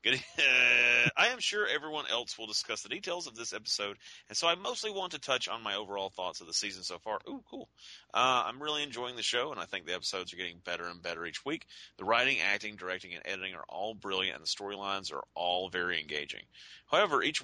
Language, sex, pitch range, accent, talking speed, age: English, male, 90-130 Hz, American, 225 wpm, 30-49